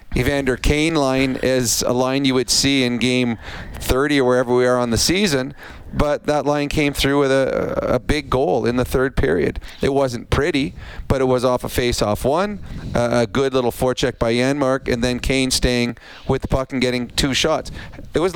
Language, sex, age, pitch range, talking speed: English, male, 40-59, 120-140 Hz, 205 wpm